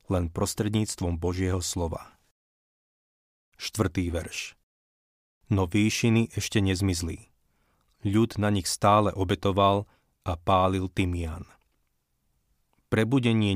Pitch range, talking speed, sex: 90-105 Hz, 85 wpm, male